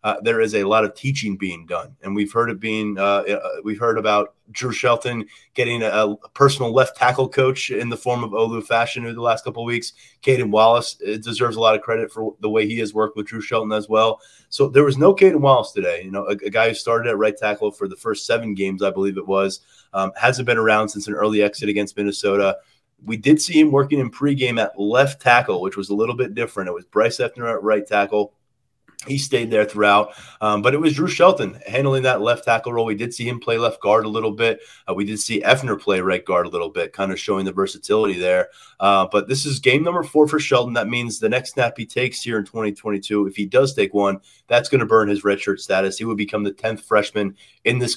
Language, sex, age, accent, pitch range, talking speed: English, male, 30-49, American, 105-120 Hz, 250 wpm